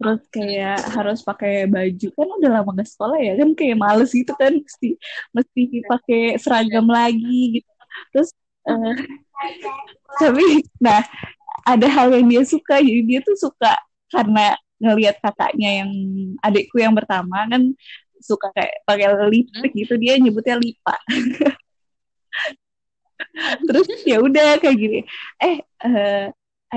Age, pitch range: 20-39, 215-295 Hz